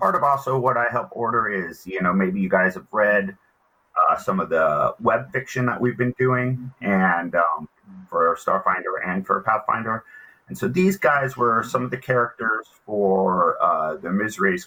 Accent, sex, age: American, male, 30-49